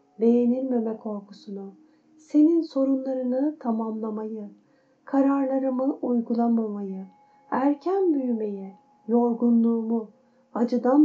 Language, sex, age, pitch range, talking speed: Turkish, female, 40-59, 215-260 Hz, 60 wpm